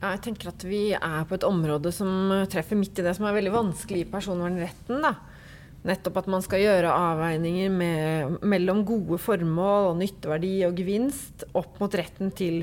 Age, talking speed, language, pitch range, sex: 30-49, 185 wpm, English, 160-195 Hz, female